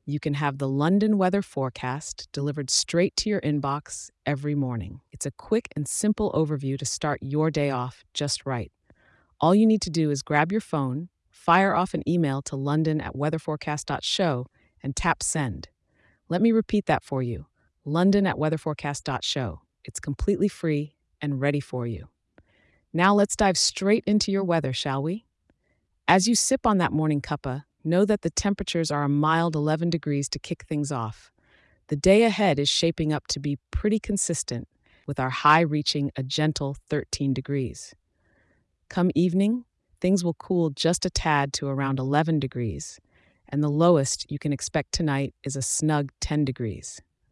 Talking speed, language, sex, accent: 165 wpm, English, female, American